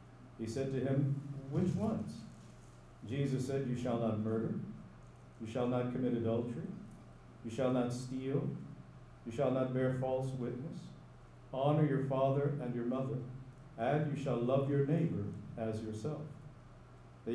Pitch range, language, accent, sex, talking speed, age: 110-135 Hz, English, American, male, 145 wpm, 50-69